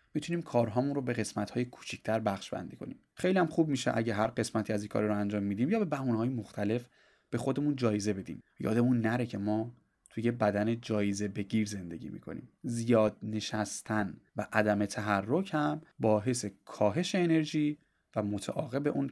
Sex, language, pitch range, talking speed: male, Persian, 105-130 Hz, 160 wpm